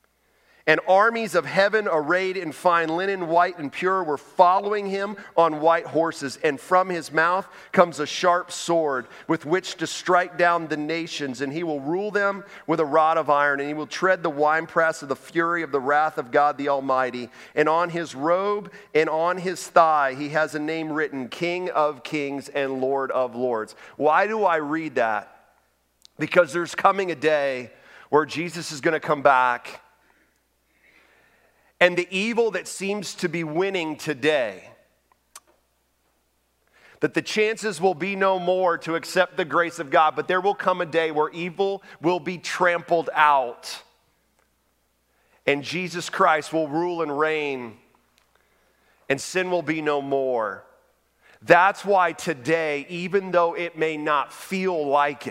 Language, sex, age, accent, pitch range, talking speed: English, male, 40-59, American, 150-180 Hz, 165 wpm